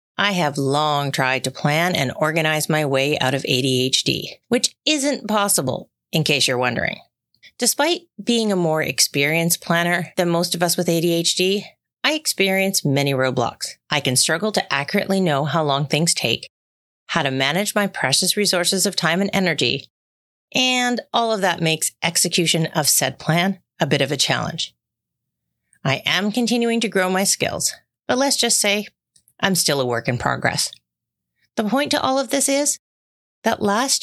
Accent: American